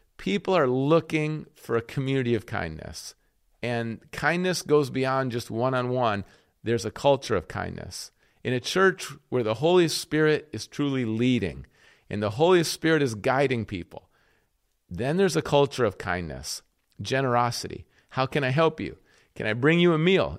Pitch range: 115-165 Hz